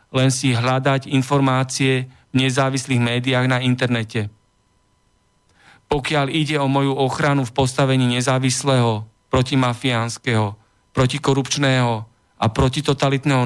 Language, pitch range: Slovak, 120-135 Hz